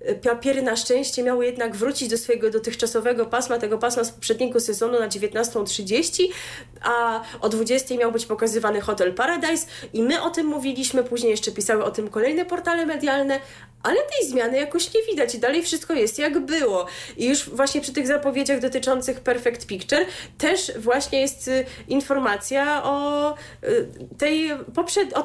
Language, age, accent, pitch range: Polish, 20-39, native, 215-275 Hz